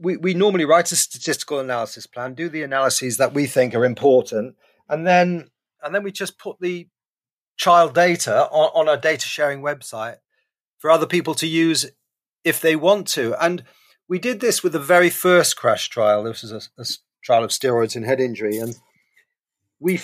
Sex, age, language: male, 40-59, English